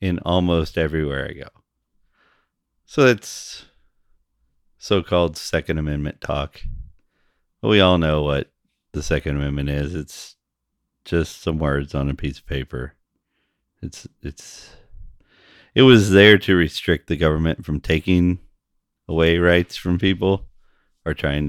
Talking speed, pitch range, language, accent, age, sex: 125 wpm, 70-90 Hz, English, American, 30-49, male